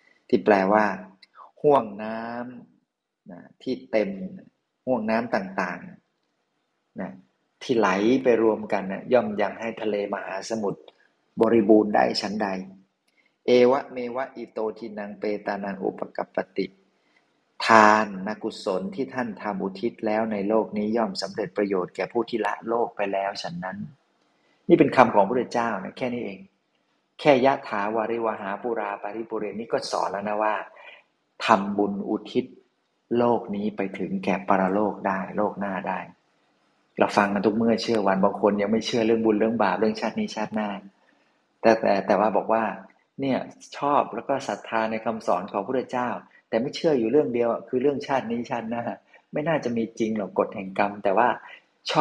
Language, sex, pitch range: Thai, male, 100-115 Hz